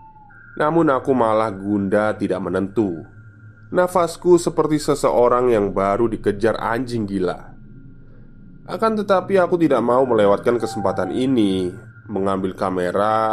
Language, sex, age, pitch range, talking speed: Indonesian, male, 20-39, 105-130 Hz, 110 wpm